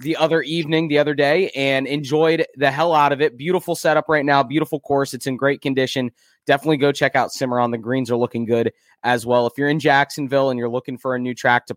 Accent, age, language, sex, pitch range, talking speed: American, 20-39, English, male, 130-160 Hz, 240 wpm